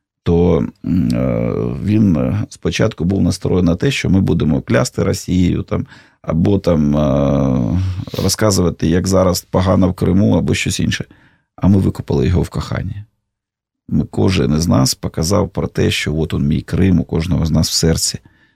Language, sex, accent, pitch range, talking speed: Russian, male, native, 80-100 Hz, 155 wpm